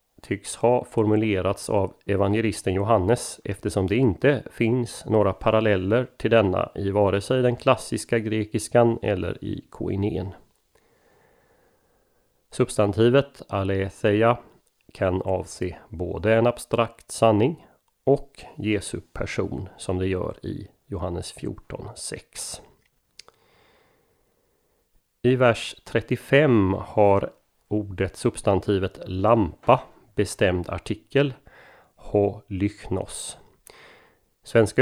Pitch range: 95-115 Hz